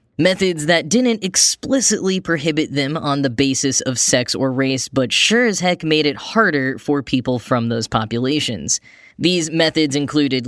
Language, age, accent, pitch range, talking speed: English, 10-29, American, 130-155 Hz, 160 wpm